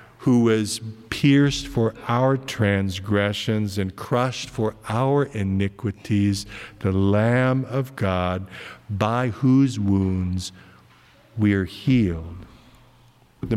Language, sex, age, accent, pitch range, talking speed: English, male, 50-69, American, 100-125 Hz, 95 wpm